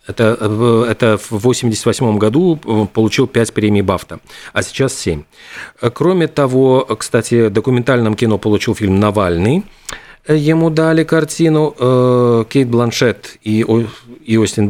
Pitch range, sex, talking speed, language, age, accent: 105-135 Hz, male, 115 wpm, Russian, 40-59, native